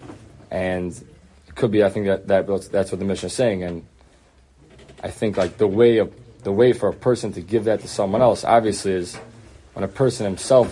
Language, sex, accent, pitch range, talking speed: English, male, American, 95-115 Hz, 215 wpm